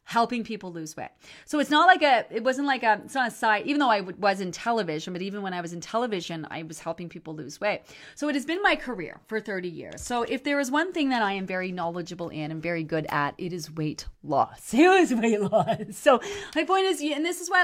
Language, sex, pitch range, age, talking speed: English, female, 185-270 Hz, 30-49, 265 wpm